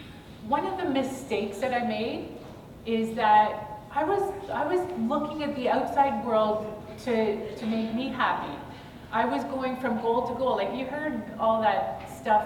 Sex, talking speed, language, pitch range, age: female, 175 wpm, English, 205-265 Hz, 30-49